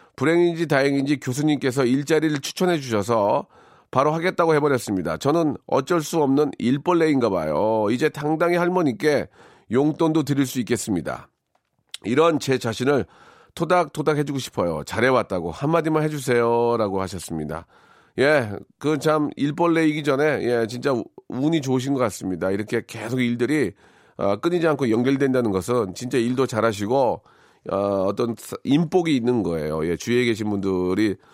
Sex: male